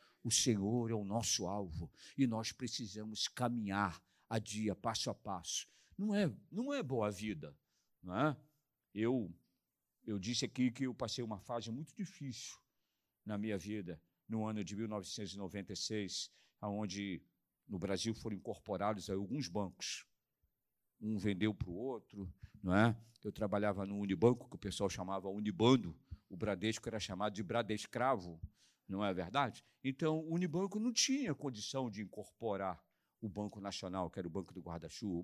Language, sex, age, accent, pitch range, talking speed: Portuguese, male, 50-69, Brazilian, 100-125 Hz, 160 wpm